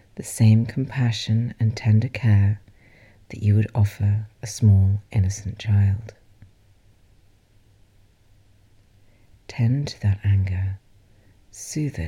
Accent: British